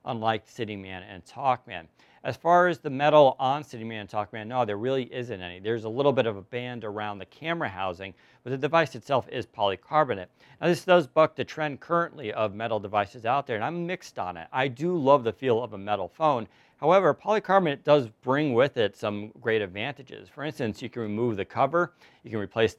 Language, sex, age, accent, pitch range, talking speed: English, male, 40-59, American, 110-155 Hz, 215 wpm